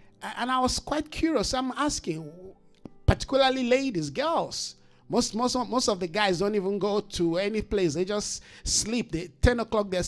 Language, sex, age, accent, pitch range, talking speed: English, male, 50-69, Nigerian, 175-235 Hz, 175 wpm